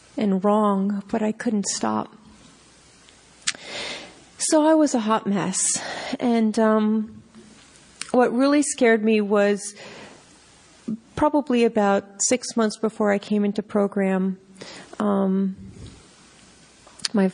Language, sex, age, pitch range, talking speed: English, female, 40-59, 195-235 Hz, 105 wpm